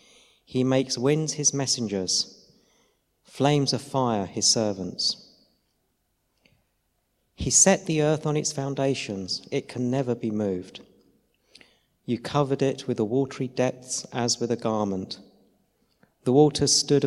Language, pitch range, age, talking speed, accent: English, 115-140 Hz, 50-69, 125 wpm, British